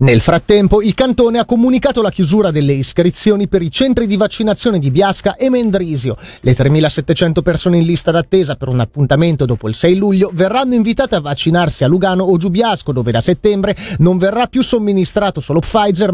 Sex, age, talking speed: male, 30-49, 180 wpm